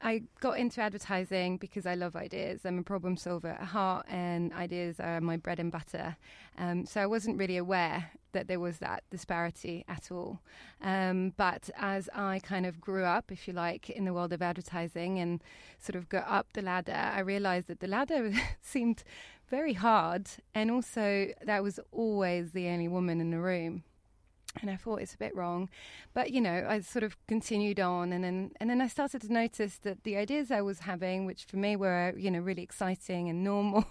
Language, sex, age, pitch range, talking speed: English, female, 20-39, 180-210 Hz, 205 wpm